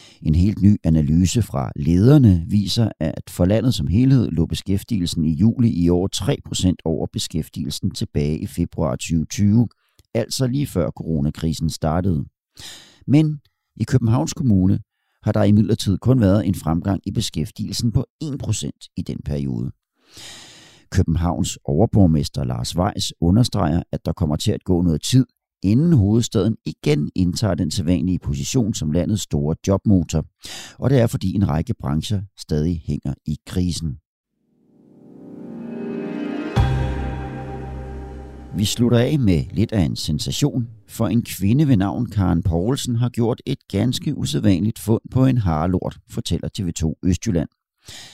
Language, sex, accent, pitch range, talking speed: Danish, male, native, 85-115 Hz, 135 wpm